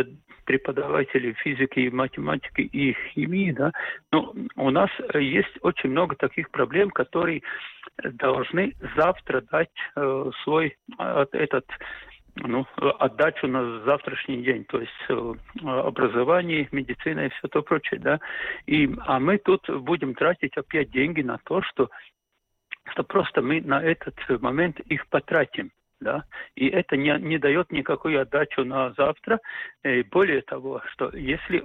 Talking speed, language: 130 wpm, Russian